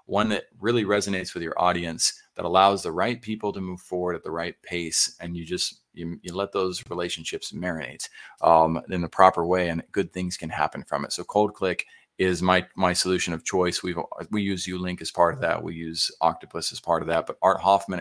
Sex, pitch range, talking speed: male, 90-105 Hz, 220 wpm